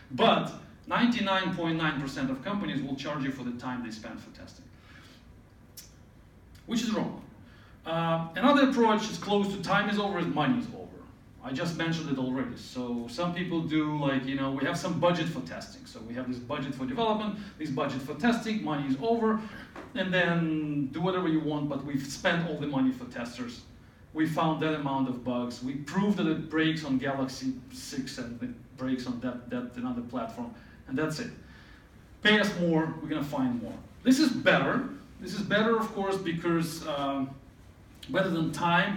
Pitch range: 135-205 Hz